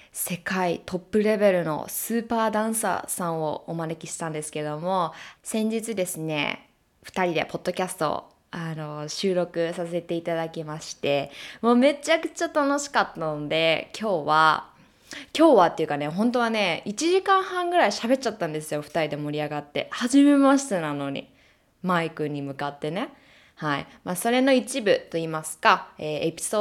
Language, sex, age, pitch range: Japanese, female, 20-39, 160-220 Hz